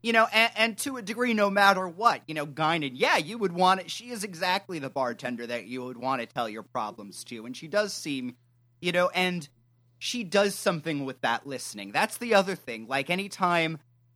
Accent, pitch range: American, 120-180 Hz